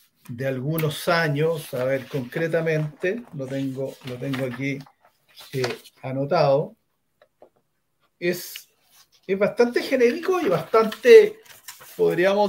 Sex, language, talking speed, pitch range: male, Spanish, 95 wpm, 150-215 Hz